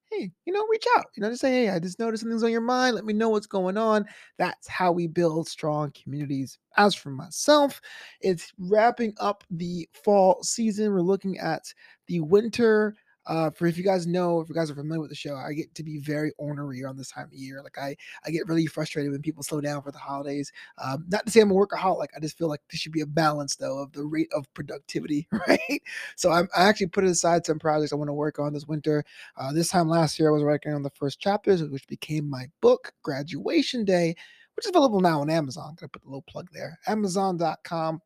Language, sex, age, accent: English, male, 20-39, American